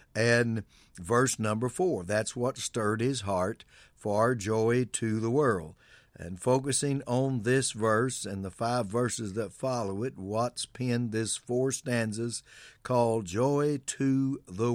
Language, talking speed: English, 140 wpm